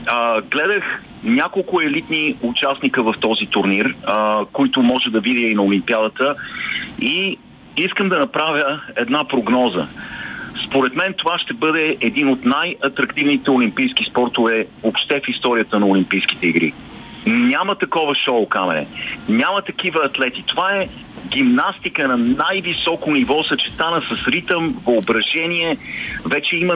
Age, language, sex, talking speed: 40-59, Bulgarian, male, 125 wpm